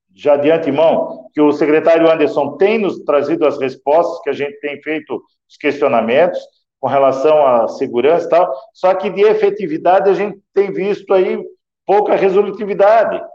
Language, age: Portuguese, 50-69